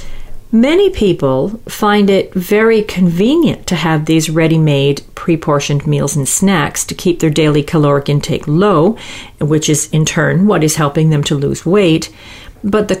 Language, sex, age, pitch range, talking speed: English, female, 40-59, 155-210 Hz, 155 wpm